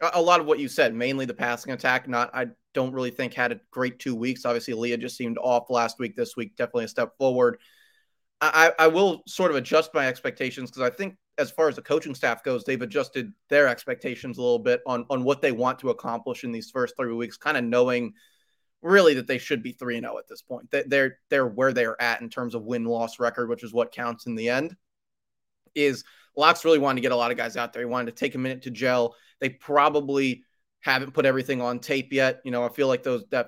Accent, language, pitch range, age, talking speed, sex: American, English, 120-135 Hz, 30-49, 245 wpm, male